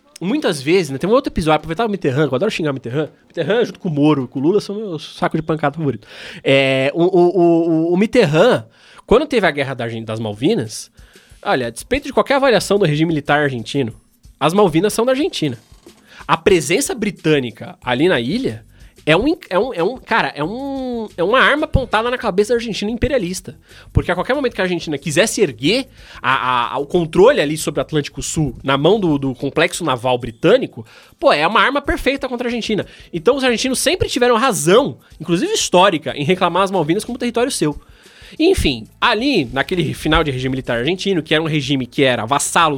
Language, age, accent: Portuguese, 20-39, Brazilian